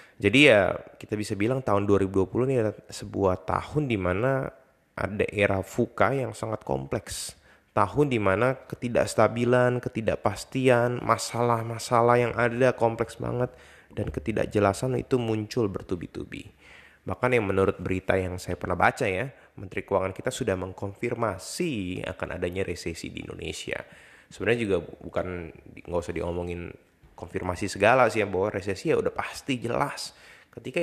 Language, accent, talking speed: Indonesian, native, 135 wpm